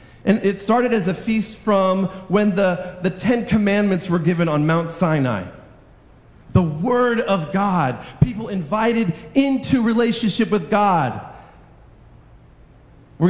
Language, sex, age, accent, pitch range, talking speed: English, male, 40-59, American, 140-195 Hz, 125 wpm